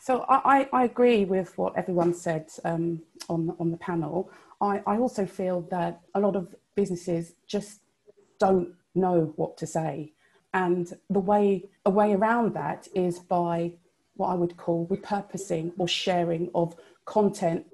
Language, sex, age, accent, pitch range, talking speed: English, female, 30-49, British, 170-195 Hz, 160 wpm